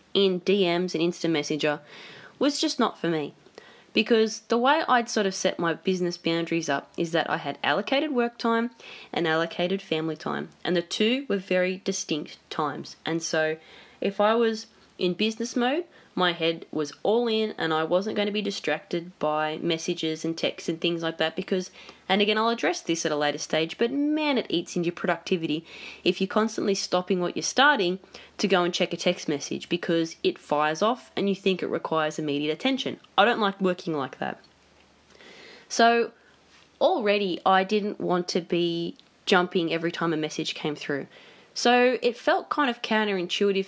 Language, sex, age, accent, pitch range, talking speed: English, female, 20-39, Australian, 165-220 Hz, 185 wpm